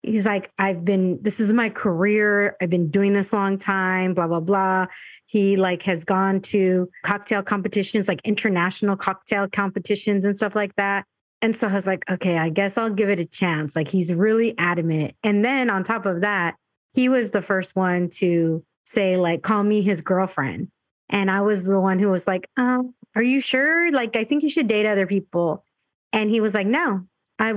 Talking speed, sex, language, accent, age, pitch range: 200 wpm, female, English, American, 30-49, 185-225 Hz